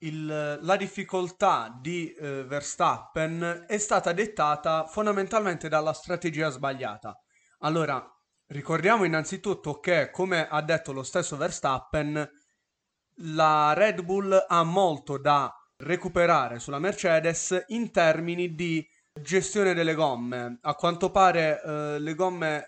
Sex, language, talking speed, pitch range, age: male, Italian, 115 wpm, 145-180 Hz, 30-49